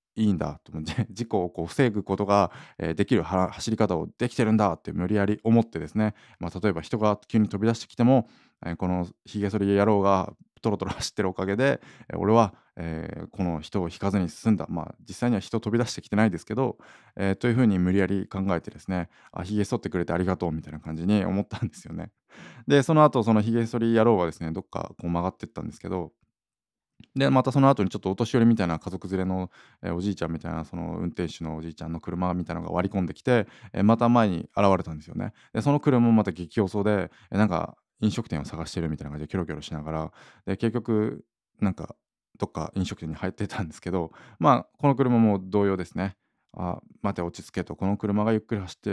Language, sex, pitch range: Japanese, male, 90-110 Hz